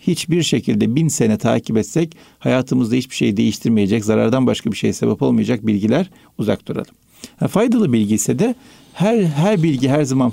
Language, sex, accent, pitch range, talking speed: Turkish, male, native, 110-165 Hz, 170 wpm